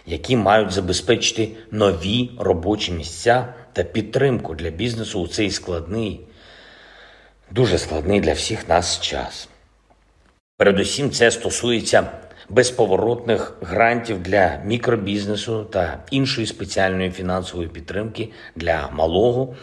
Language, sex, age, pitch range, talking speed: Ukrainian, male, 50-69, 90-115 Hz, 100 wpm